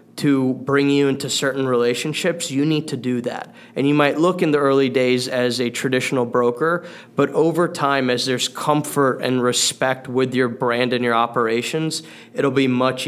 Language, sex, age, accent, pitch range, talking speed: English, male, 20-39, American, 120-140 Hz, 185 wpm